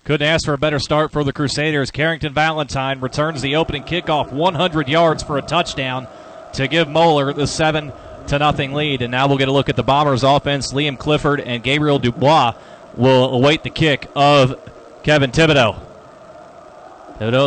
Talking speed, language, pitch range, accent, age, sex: 170 wpm, English, 135-155 Hz, American, 30-49, male